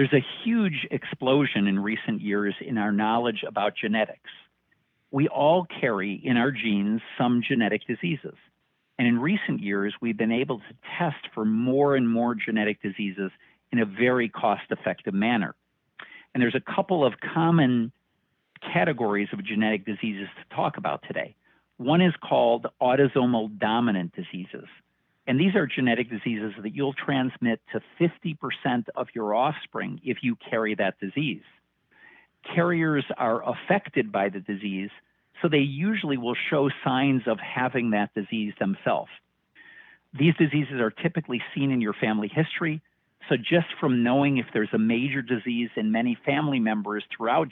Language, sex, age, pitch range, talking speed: English, male, 50-69, 110-145 Hz, 150 wpm